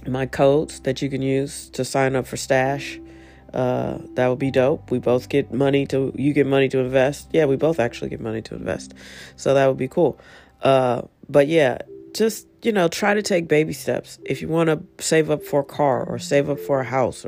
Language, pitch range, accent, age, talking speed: English, 120-150 Hz, American, 40-59, 225 wpm